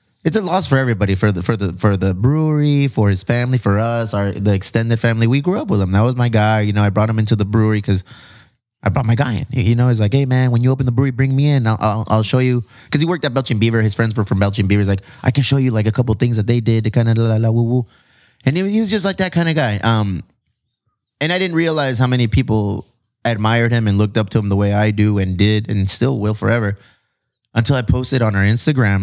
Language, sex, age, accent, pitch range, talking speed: English, male, 20-39, American, 105-125 Hz, 285 wpm